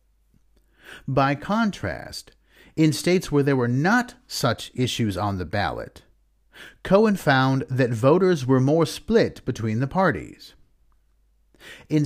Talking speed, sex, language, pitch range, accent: 120 wpm, male, English, 110-155 Hz, American